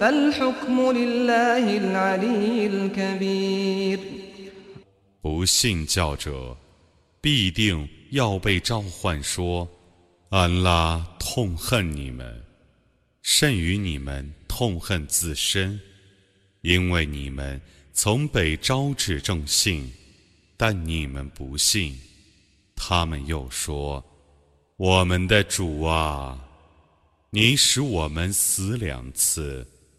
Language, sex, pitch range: Arabic, male, 75-110 Hz